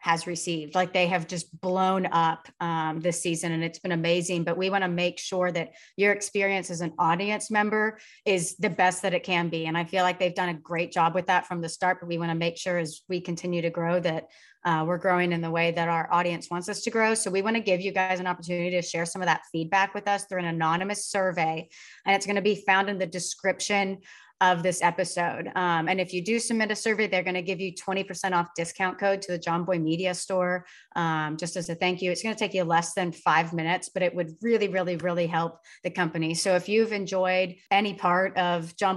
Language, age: English, 30-49